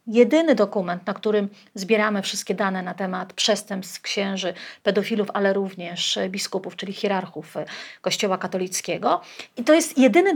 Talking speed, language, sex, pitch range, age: 135 wpm, Polish, female, 205-250 Hz, 40-59